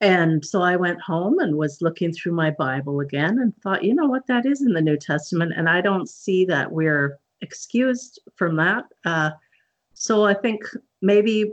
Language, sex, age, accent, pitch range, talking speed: English, female, 50-69, American, 155-195 Hz, 195 wpm